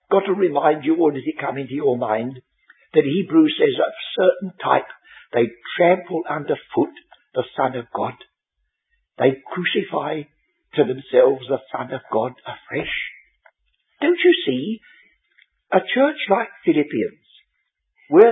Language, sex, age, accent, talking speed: English, male, 60-79, British, 135 wpm